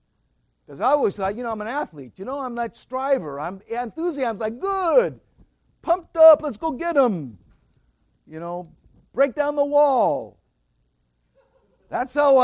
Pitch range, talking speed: 155-255 Hz, 160 wpm